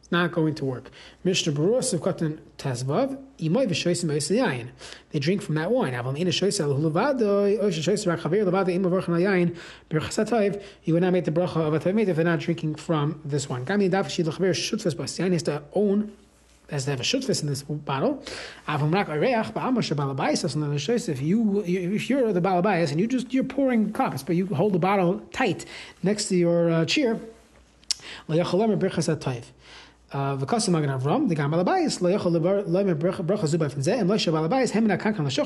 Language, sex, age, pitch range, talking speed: English, male, 30-49, 155-200 Hz, 70 wpm